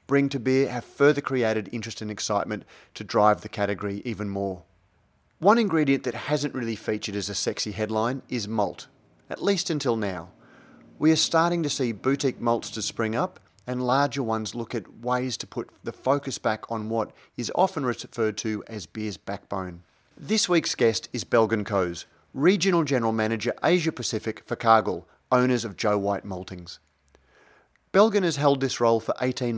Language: English